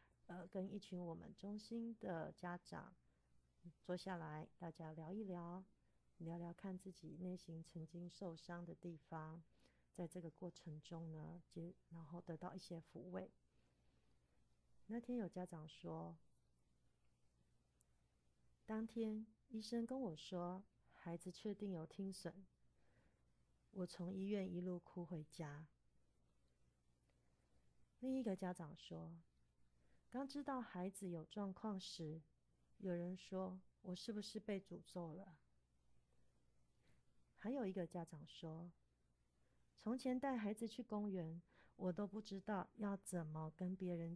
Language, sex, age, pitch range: Chinese, female, 30-49, 150-195 Hz